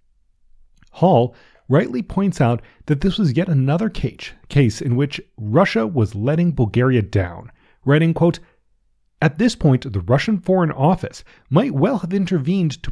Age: 40-59